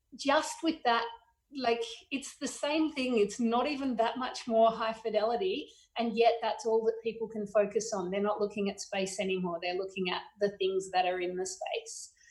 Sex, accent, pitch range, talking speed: female, Australian, 190-235 Hz, 200 wpm